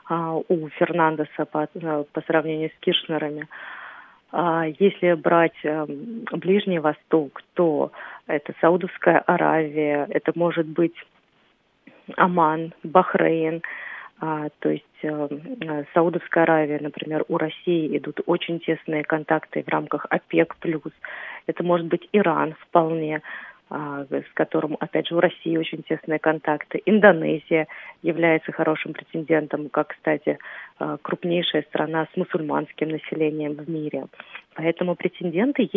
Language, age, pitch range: Russian, 30-49, 155-175 Hz